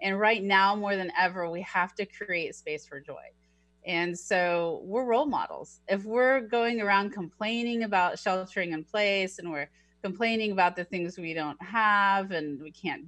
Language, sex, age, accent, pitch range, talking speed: English, female, 30-49, American, 170-215 Hz, 180 wpm